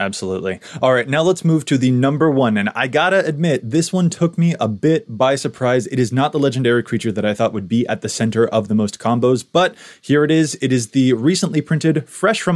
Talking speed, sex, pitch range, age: 245 wpm, male, 110-155 Hz, 20-39